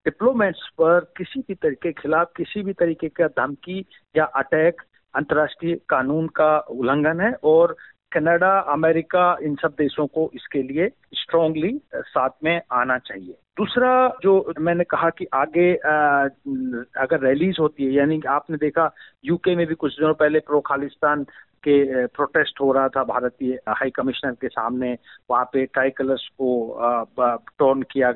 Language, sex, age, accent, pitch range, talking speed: Hindi, male, 50-69, native, 140-180 Hz, 145 wpm